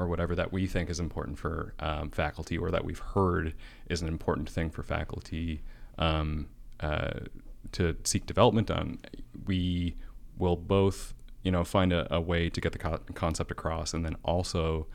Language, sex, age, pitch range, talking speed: English, male, 30-49, 80-90 Hz, 175 wpm